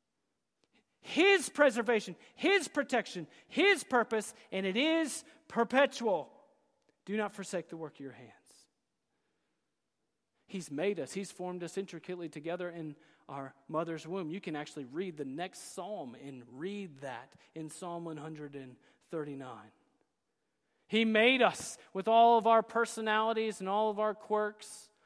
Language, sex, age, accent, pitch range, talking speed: English, male, 40-59, American, 195-275 Hz, 135 wpm